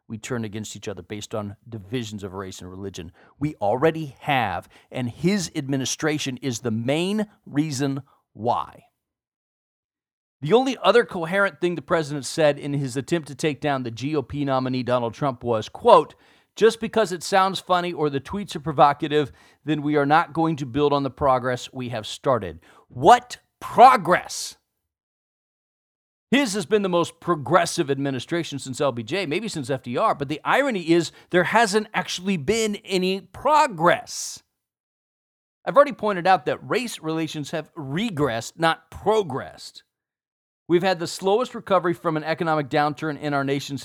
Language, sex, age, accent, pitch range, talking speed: English, male, 40-59, American, 140-180 Hz, 155 wpm